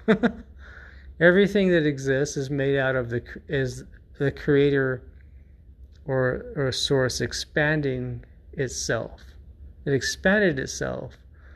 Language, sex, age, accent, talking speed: English, male, 40-59, American, 100 wpm